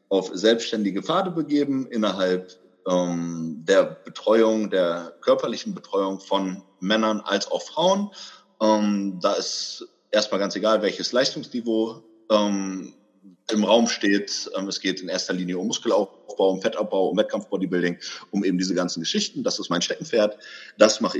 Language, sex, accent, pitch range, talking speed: German, male, German, 95-115 Hz, 145 wpm